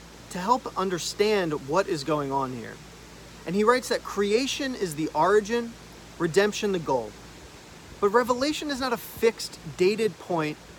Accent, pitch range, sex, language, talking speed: American, 170-230 Hz, male, English, 145 wpm